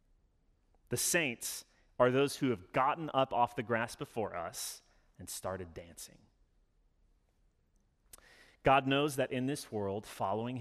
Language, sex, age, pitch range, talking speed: English, male, 30-49, 95-125 Hz, 130 wpm